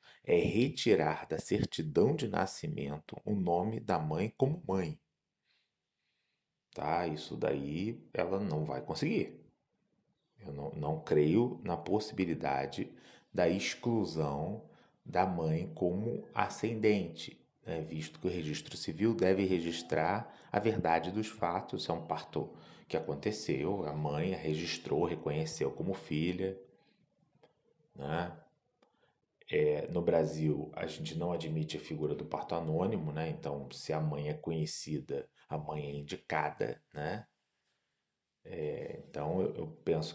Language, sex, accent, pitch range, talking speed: Portuguese, male, Brazilian, 75-95 Hz, 125 wpm